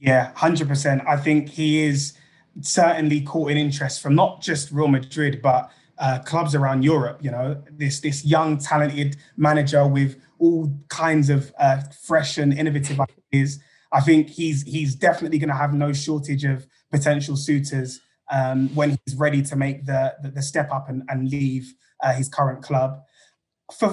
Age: 20-39